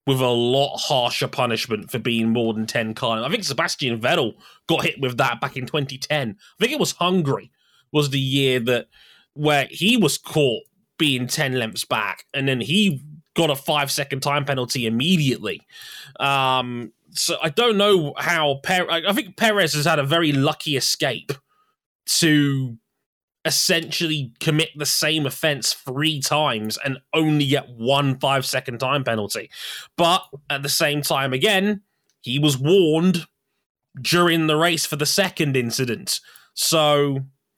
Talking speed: 155 wpm